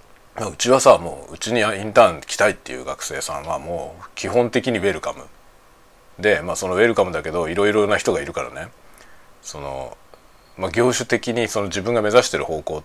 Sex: male